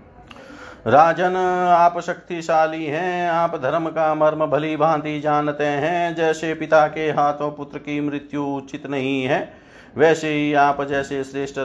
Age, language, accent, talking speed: 50-69, Hindi, native, 140 wpm